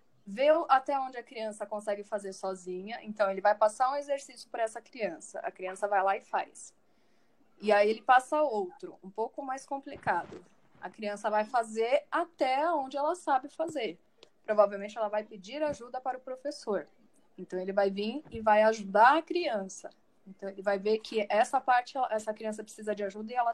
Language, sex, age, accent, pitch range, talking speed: Portuguese, female, 10-29, Brazilian, 200-265 Hz, 185 wpm